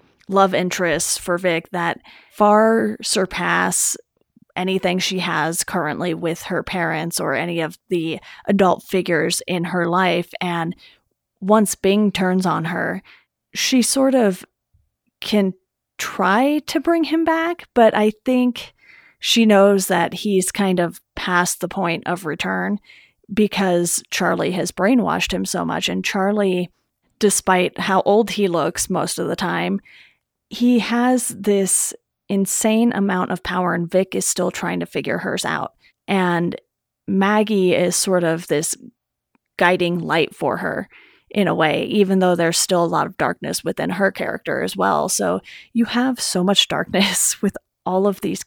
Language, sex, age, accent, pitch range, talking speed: English, female, 30-49, American, 175-215 Hz, 150 wpm